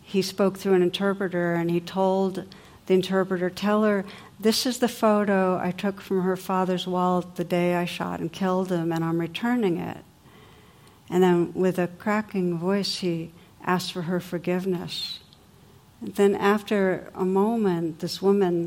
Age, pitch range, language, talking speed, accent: 60-79, 175-195 Hz, English, 165 wpm, American